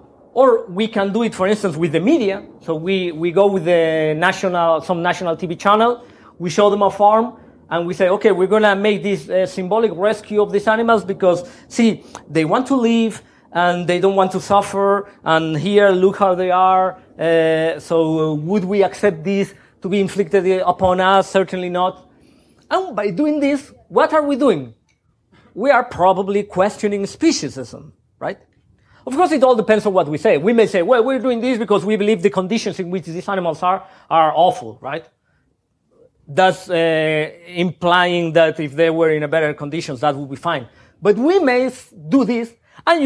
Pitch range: 170-215 Hz